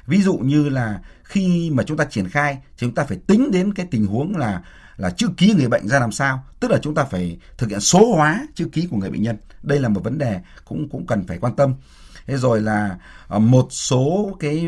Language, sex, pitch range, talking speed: Vietnamese, male, 90-145 Hz, 245 wpm